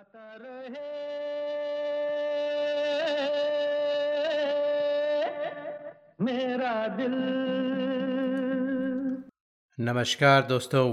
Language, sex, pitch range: Hindi, male, 110-145 Hz